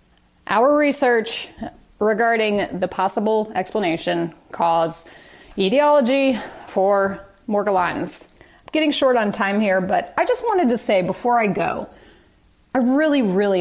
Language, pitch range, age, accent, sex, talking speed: English, 185-245 Hz, 30-49, American, female, 120 wpm